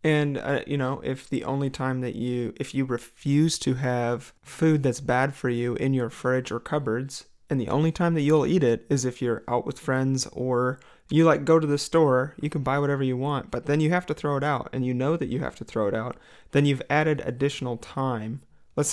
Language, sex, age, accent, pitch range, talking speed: English, male, 30-49, American, 125-150 Hz, 240 wpm